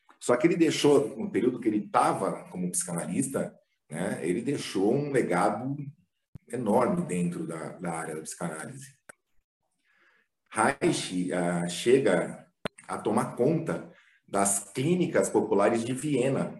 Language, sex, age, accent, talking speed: Portuguese, male, 40-59, Brazilian, 125 wpm